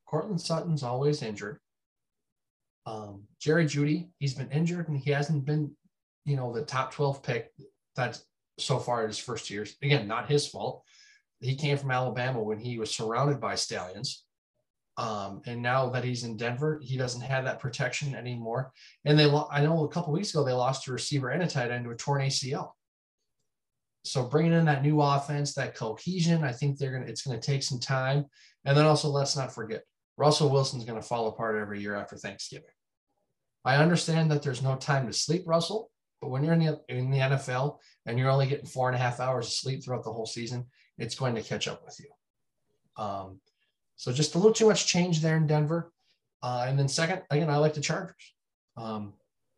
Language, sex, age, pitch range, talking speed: English, male, 20-39, 125-155 Hz, 200 wpm